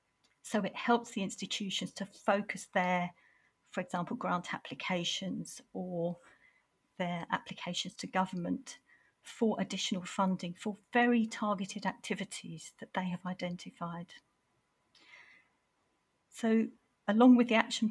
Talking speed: 110 wpm